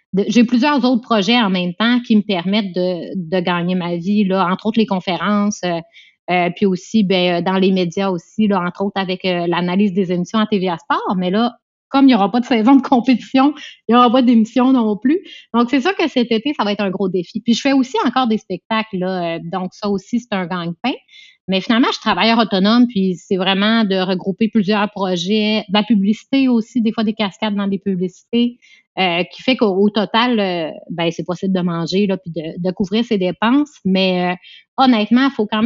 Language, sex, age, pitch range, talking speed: French, female, 30-49, 185-230 Hz, 220 wpm